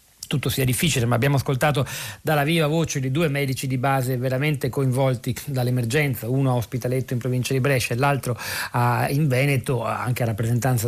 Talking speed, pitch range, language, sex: 175 wpm, 120-140 Hz, Italian, male